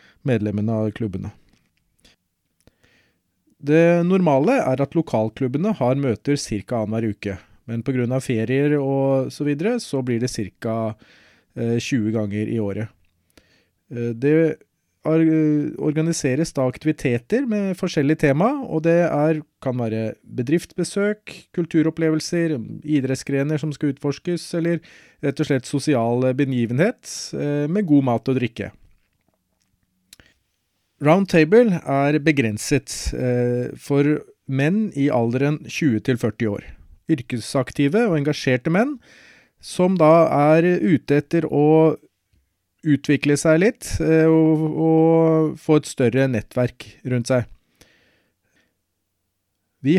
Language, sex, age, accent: English, male, 30-49, Norwegian